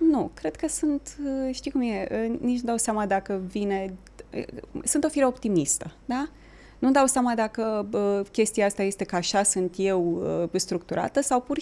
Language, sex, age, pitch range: Romanian, female, 20-39, 205-255 Hz